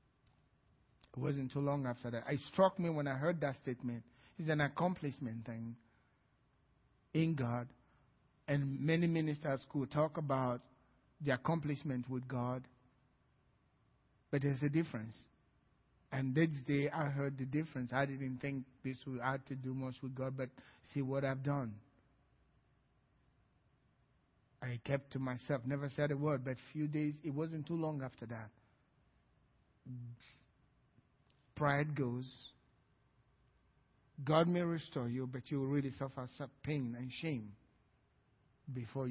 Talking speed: 140 wpm